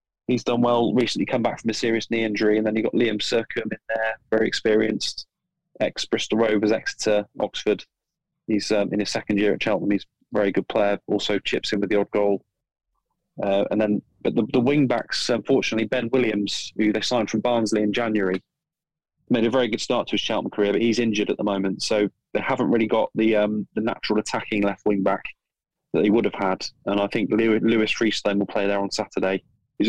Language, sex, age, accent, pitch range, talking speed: English, male, 20-39, British, 105-120 Hz, 205 wpm